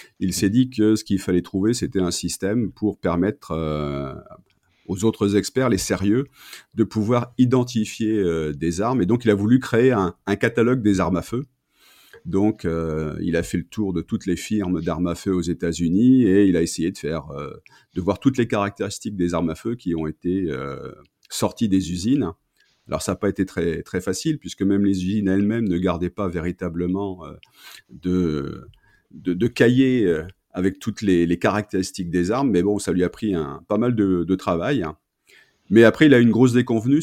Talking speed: 205 wpm